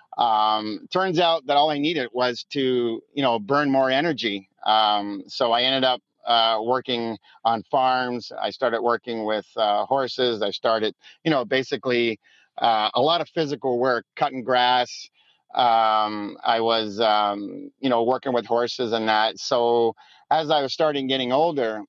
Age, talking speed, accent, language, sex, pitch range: 40-59, 165 wpm, American, English, male, 110-135 Hz